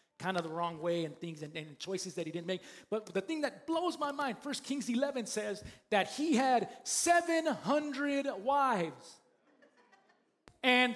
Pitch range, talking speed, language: 190-265 Hz, 170 wpm, English